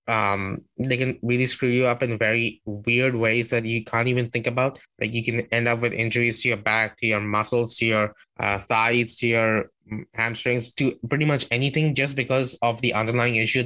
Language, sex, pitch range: English, male, 110-130 Hz